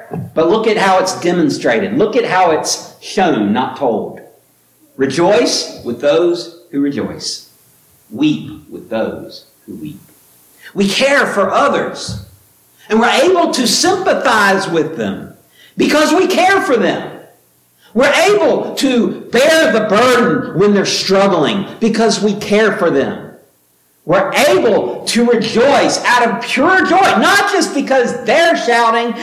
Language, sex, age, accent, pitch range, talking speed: English, male, 50-69, American, 190-250 Hz, 135 wpm